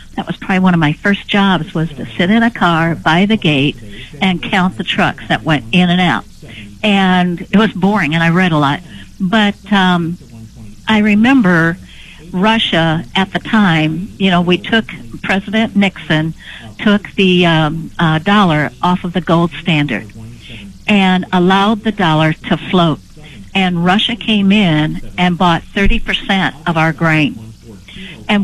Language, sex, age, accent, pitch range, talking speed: English, female, 60-79, American, 160-200 Hz, 160 wpm